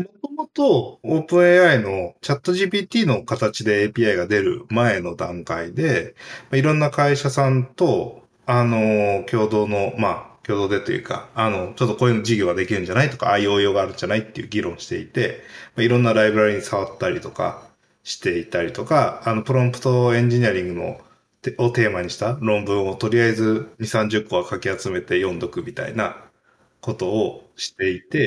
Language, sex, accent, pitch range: Japanese, male, native, 110-180 Hz